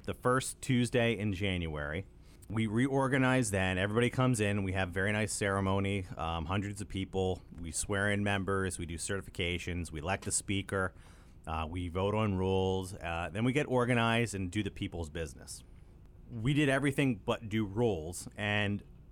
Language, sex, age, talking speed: English, male, 30-49, 165 wpm